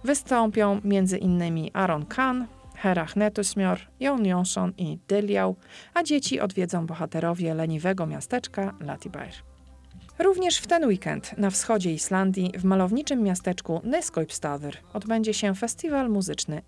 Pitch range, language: 160-225 Hz, Polish